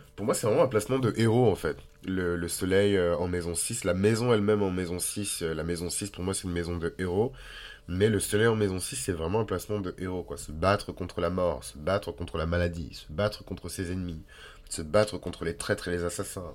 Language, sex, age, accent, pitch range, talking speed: French, male, 20-39, French, 85-105 Hz, 255 wpm